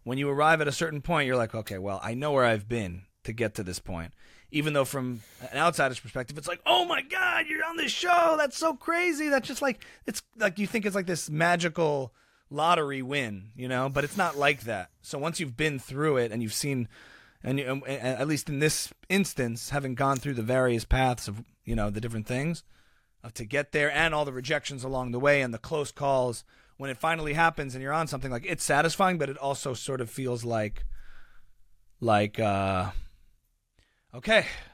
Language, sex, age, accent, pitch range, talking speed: English, male, 30-49, American, 115-155 Hz, 210 wpm